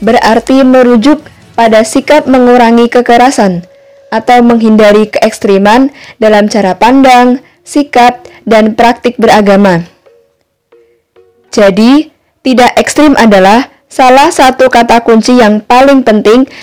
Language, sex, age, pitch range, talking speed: Indonesian, female, 10-29, 210-250 Hz, 95 wpm